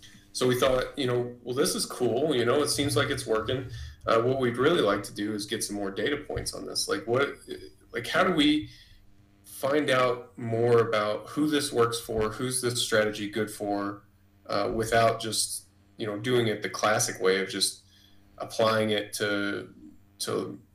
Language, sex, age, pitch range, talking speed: English, male, 20-39, 100-115 Hz, 190 wpm